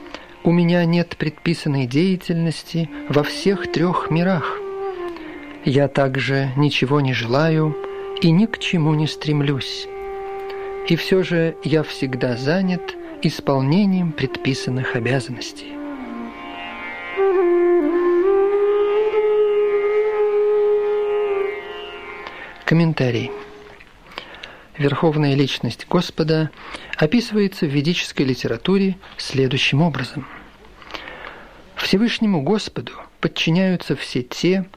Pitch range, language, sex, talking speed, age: 145-215 Hz, Russian, male, 75 wpm, 40-59